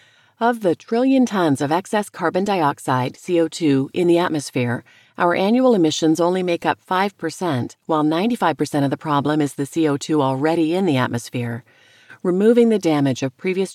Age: 40-59